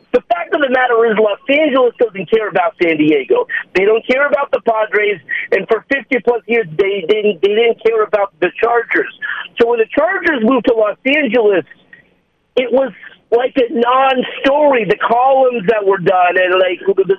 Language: English